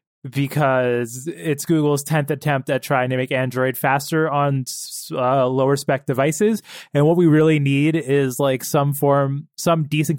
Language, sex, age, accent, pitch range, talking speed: English, male, 20-39, American, 135-170 Hz, 160 wpm